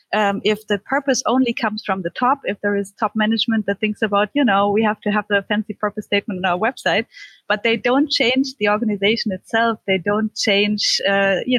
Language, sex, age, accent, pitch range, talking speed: English, female, 20-39, German, 200-235 Hz, 215 wpm